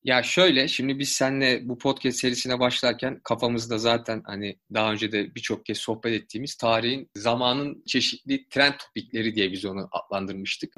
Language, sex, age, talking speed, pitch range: Turkish, male, 30-49, 155 wpm, 115-160 Hz